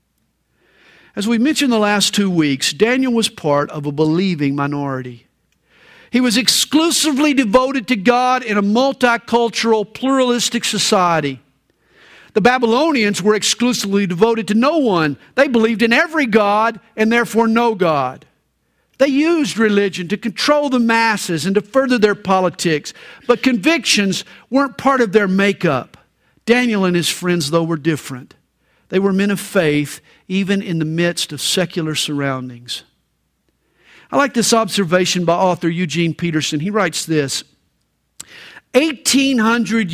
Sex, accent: male, American